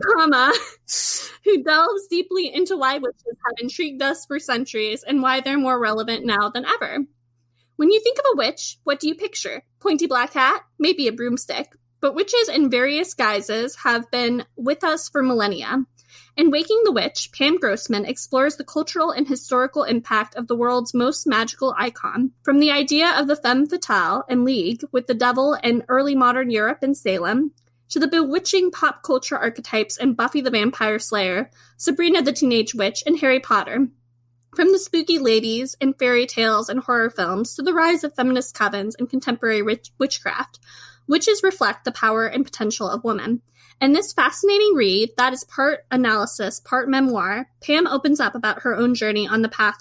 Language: English